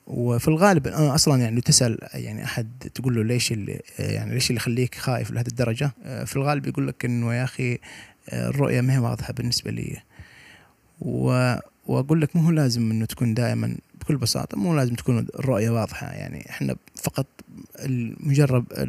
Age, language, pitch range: 20-39, Arabic, 115-135 Hz